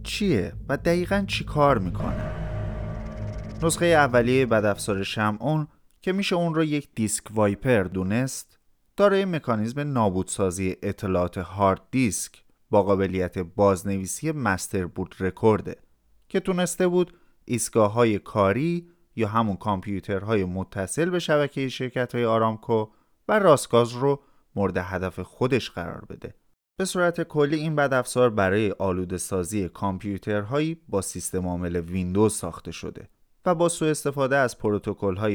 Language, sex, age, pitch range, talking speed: Persian, male, 30-49, 95-140 Hz, 125 wpm